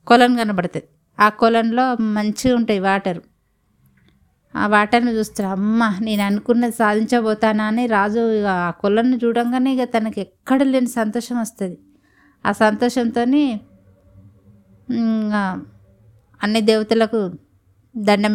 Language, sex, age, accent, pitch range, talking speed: Telugu, female, 20-39, native, 205-240 Hz, 95 wpm